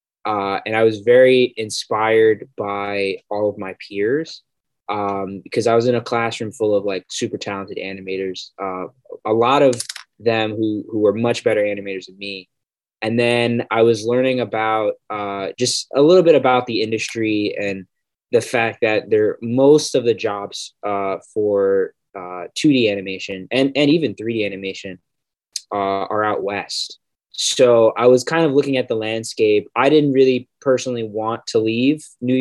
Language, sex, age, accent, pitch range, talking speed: English, male, 20-39, American, 100-120 Hz, 170 wpm